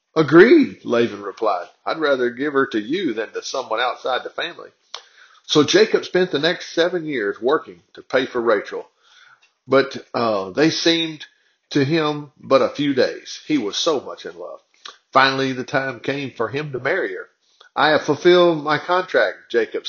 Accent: American